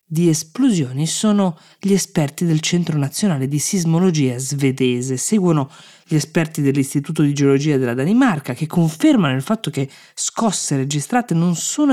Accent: native